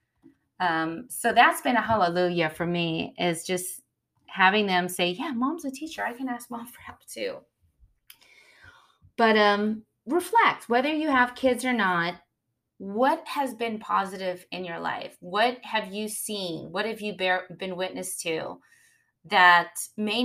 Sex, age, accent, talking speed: female, 20-39, American, 155 wpm